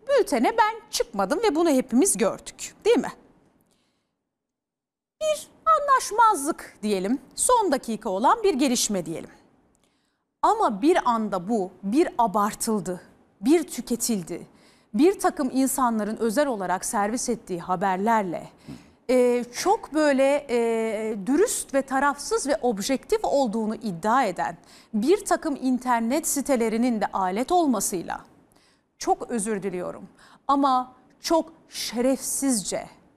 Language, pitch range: Turkish, 220-295 Hz